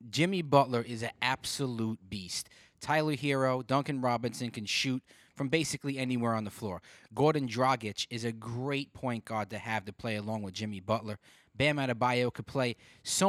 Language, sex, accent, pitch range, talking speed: English, male, American, 110-140 Hz, 170 wpm